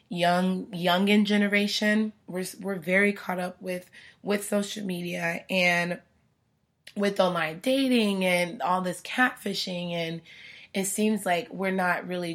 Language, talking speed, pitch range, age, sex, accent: English, 135 wpm, 170-195 Hz, 20-39, female, American